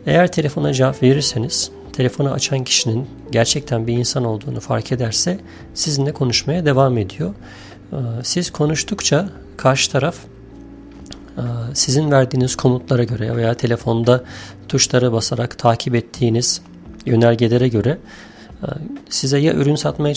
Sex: male